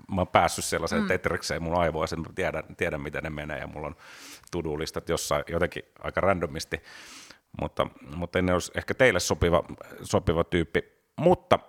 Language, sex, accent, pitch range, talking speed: Finnish, male, native, 75-90 Hz, 155 wpm